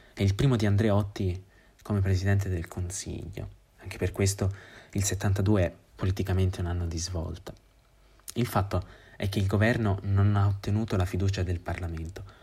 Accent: native